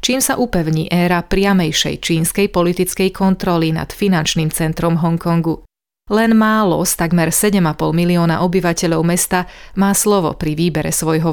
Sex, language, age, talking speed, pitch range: female, Slovak, 30-49, 130 wpm, 165-195 Hz